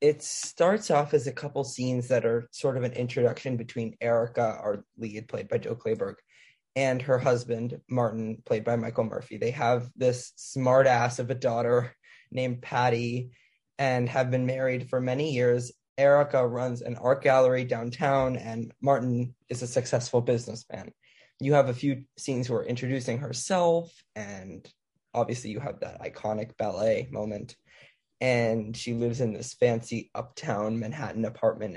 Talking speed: 160 wpm